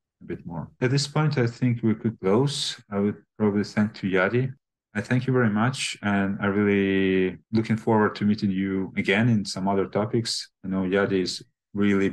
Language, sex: Ukrainian, male